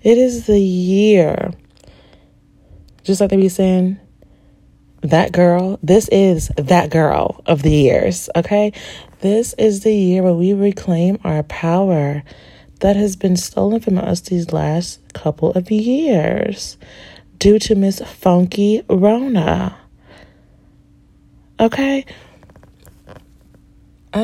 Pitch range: 155-195 Hz